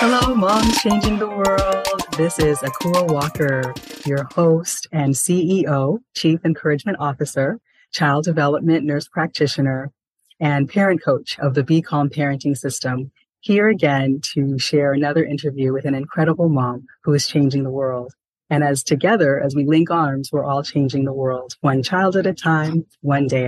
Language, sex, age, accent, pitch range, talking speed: English, female, 30-49, American, 135-160 Hz, 160 wpm